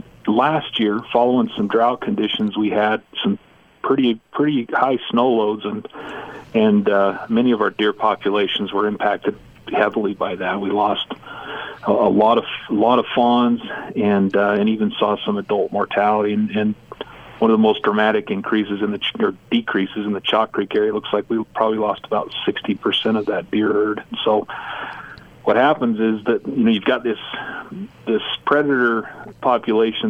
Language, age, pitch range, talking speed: English, 40-59, 105-120 Hz, 175 wpm